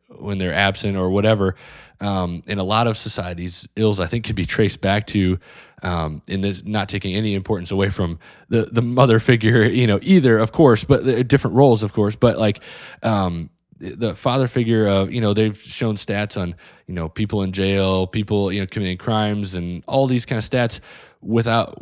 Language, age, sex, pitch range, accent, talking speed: English, 20-39, male, 95-110 Hz, American, 200 wpm